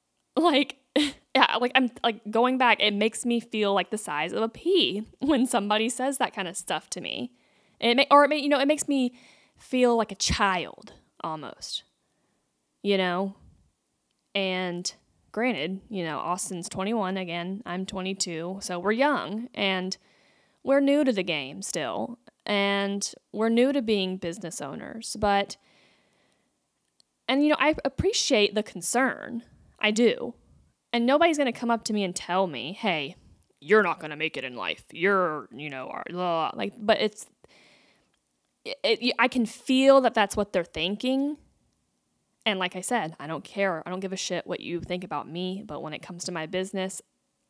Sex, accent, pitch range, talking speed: female, American, 180-245 Hz, 175 wpm